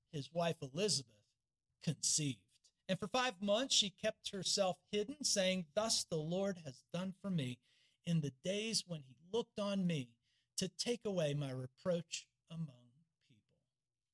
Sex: male